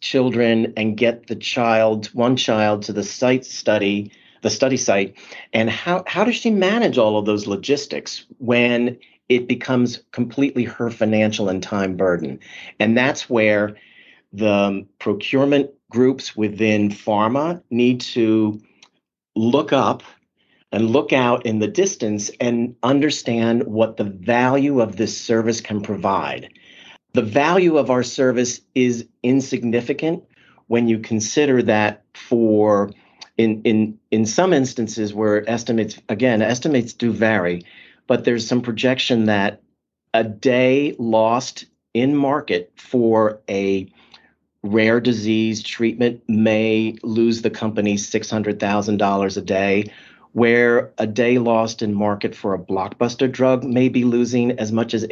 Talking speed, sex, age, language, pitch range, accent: 135 wpm, male, 40-59, English, 105-125 Hz, American